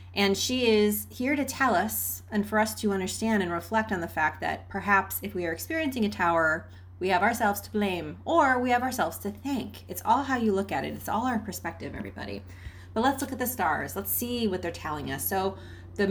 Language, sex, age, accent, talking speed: English, female, 30-49, American, 230 wpm